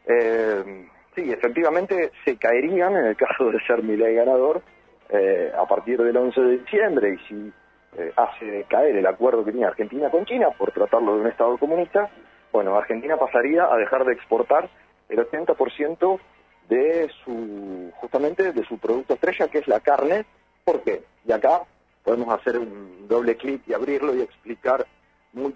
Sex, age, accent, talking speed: male, 40-59, Argentinian, 165 wpm